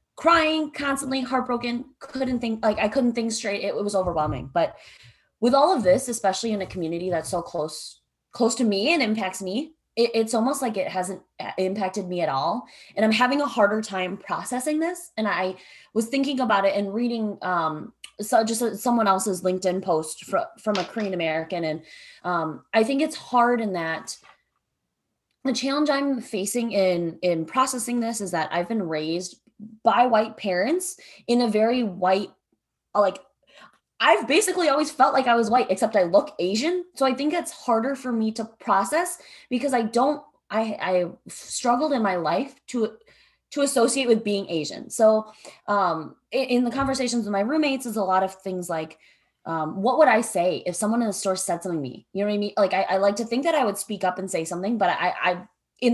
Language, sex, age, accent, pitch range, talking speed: English, female, 20-39, American, 190-260 Hz, 200 wpm